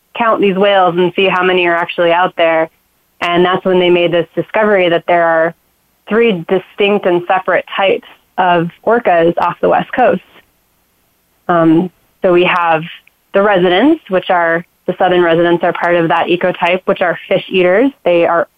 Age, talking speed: 20-39, 175 wpm